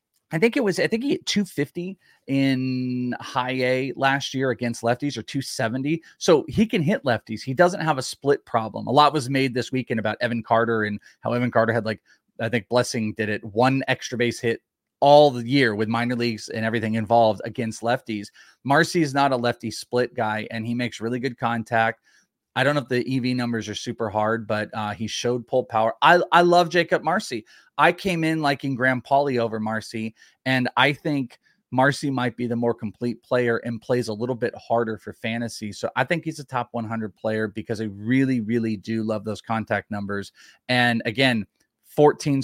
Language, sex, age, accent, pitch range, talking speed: English, male, 30-49, American, 115-135 Hz, 205 wpm